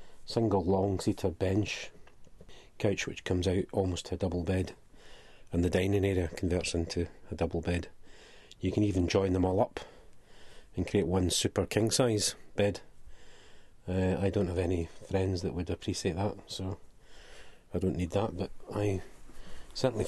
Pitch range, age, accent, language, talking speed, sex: 90-105 Hz, 40-59, British, English, 155 wpm, male